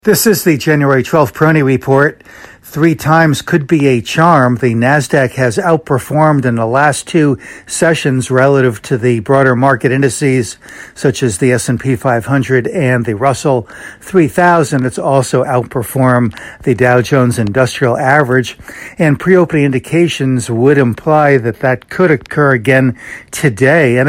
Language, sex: English, male